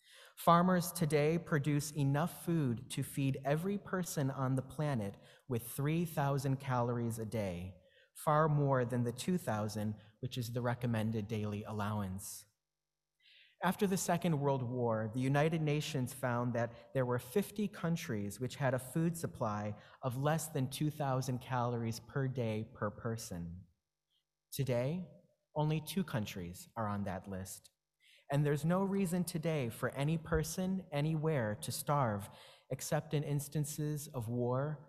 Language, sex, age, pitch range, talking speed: English, male, 30-49, 115-160 Hz, 140 wpm